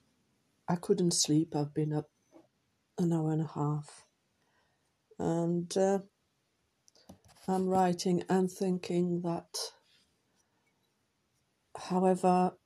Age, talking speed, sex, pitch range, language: 50-69, 90 wpm, female, 150-180 Hz, English